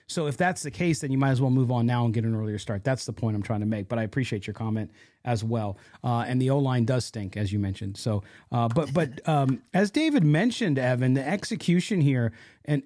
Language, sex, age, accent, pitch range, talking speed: English, male, 40-59, American, 130-190 Hz, 250 wpm